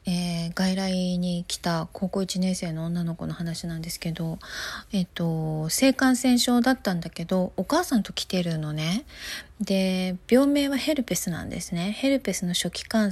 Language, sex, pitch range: Japanese, female, 175-230 Hz